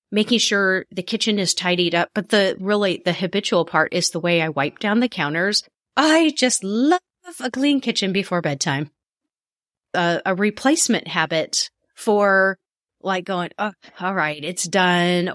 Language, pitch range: English, 175-250 Hz